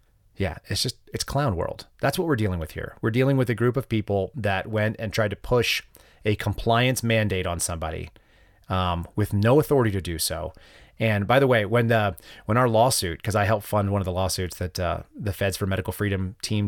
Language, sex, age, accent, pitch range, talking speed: English, male, 30-49, American, 95-110 Hz, 225 wpm